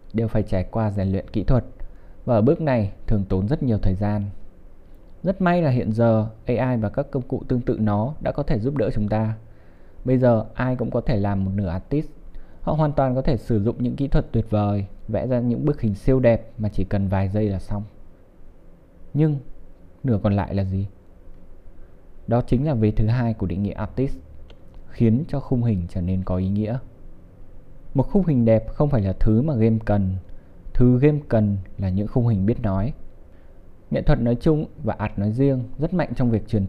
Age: 20-39